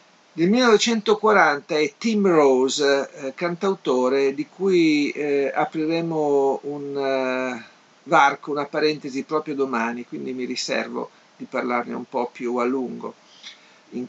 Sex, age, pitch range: male, 50-69, 125-155 Hz